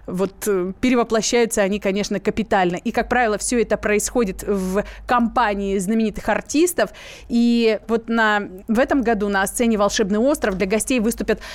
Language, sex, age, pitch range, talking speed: Russian, female, 20-39, 205-245 Hz, 145 wpm